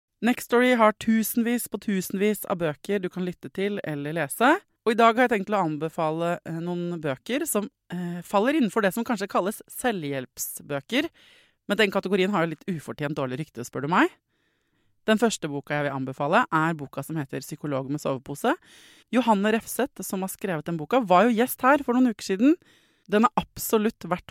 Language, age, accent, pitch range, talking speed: English, 20-39, Swedish, 155-220 Hz, 190 wpm